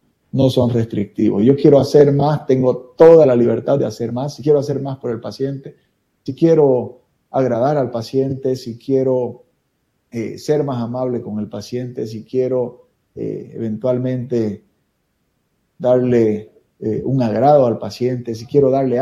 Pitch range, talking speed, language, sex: 115-145 Hz, 150 wpm, Spanish, male